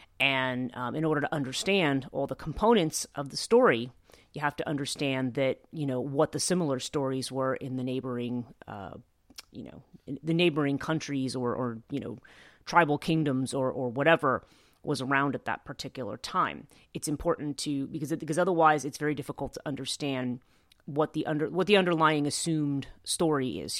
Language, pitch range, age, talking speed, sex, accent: English, 130-160 Hz, 30-49, 175 wpm, female, American